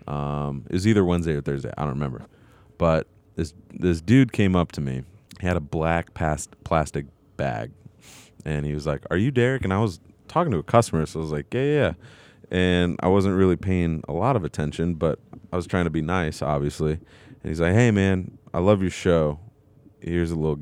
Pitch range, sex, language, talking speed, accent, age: 80-100 Hz, male, English, 215 wpm, American, 30-49